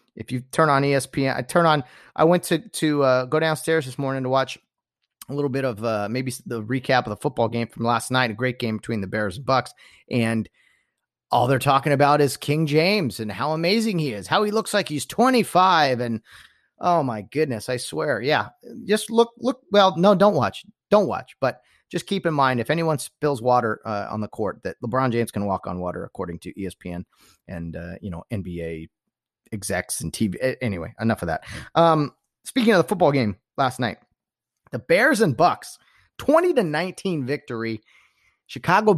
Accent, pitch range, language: American, 110-155 Hz, English